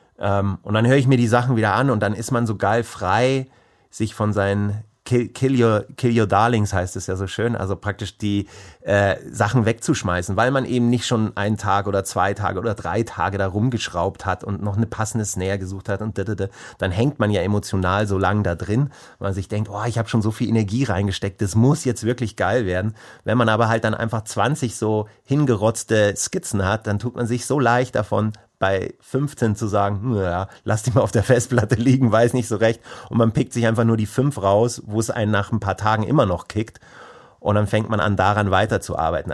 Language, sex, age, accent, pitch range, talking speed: German, male, 30-49, German, 100-115 Hz, 230 wpm